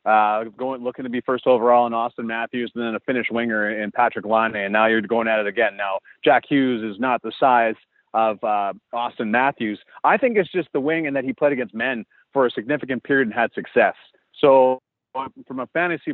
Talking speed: 220 wpm